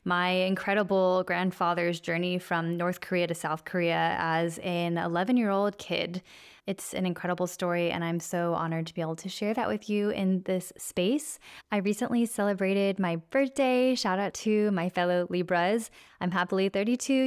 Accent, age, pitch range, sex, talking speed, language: American, 10-29, 175-205 Hz, female, 170 wpm, English